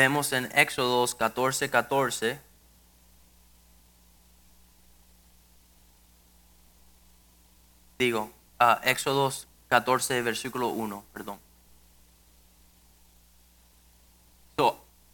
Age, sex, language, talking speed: 20-39, male, Spanish, 50 wpm